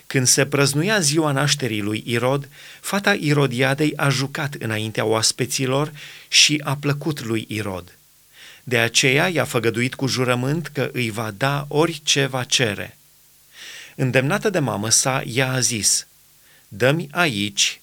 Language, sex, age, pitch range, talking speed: Romanian, male, 30-49, 115-145 Hz, 135 wpm